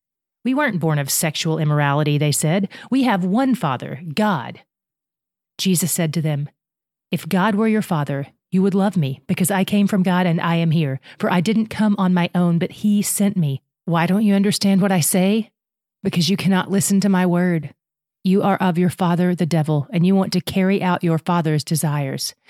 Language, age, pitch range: English, 30-49, 160-205 Hz